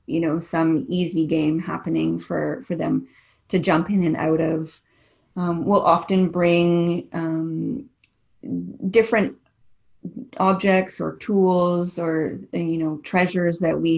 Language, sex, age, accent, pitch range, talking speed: English, female, 30-49, American, 160-180 Hz, 130 wpm